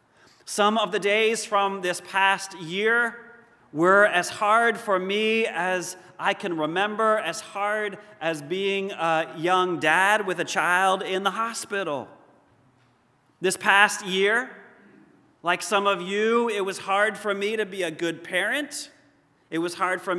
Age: 40-59